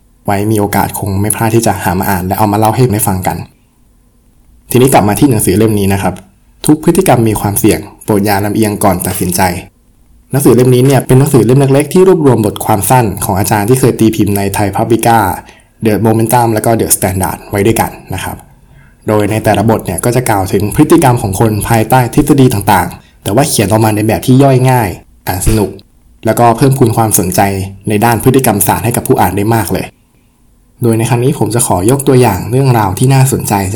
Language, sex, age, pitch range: Thai, male, 20-39, 100-125 Hz